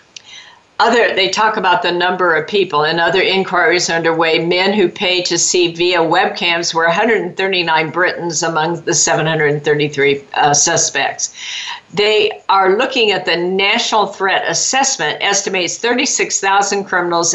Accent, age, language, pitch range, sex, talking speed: American, 50-69, English, 170-205 Hz, female, 130 wpm